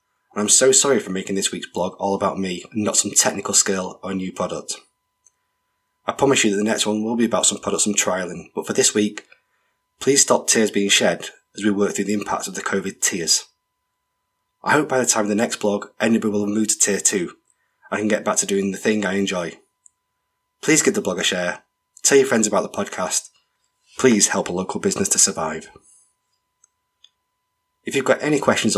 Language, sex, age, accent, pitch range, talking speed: English, male, 20-39, British, 100-150 Hz, 215 wpm